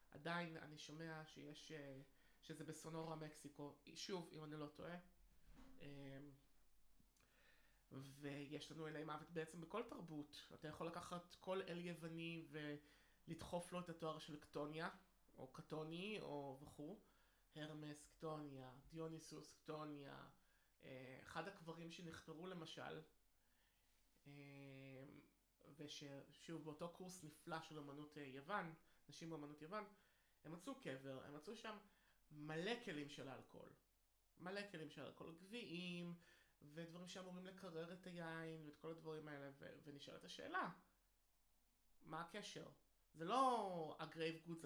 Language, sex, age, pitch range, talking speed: Hebrew, male, 20-39, 145-175 Hz, 115 wpm